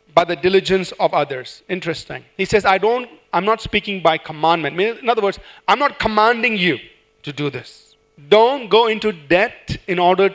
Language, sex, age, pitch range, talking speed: English, male, 40-59, 165-220 Hz, 190 wpm